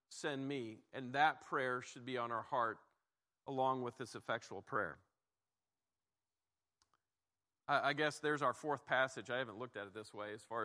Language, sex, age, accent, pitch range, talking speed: English, male, 40-59, American, 125-155 Hz, 175 wpm